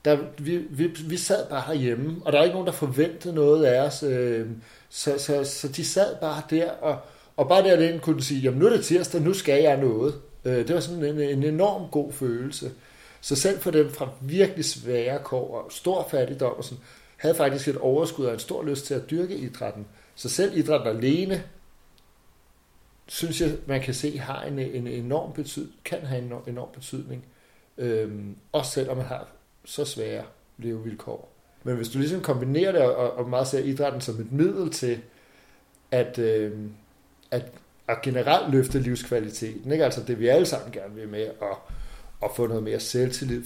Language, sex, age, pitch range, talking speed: Danish, male, 60-79, 120-155 Hz, 190 wpm